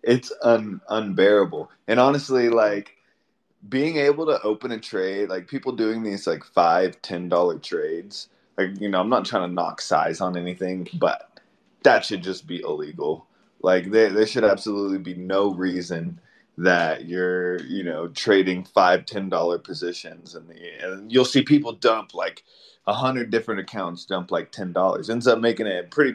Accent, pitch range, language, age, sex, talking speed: American, 95-140 Hz, English, 20-39, male, 175 wpm